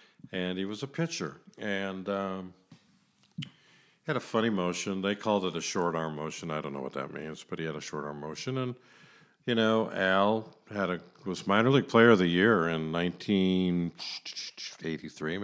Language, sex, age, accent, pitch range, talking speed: English, male, 50-69, American, 85-105 Hz, 180 wpm